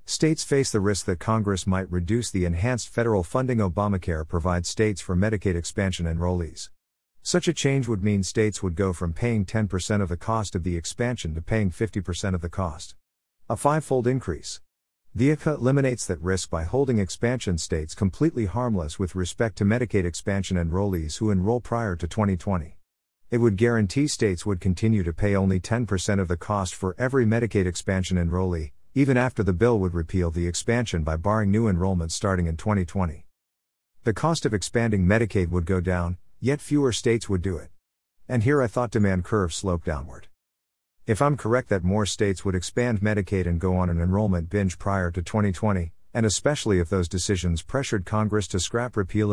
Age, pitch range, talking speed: 50-69, 90-115 Hz, 180 wpm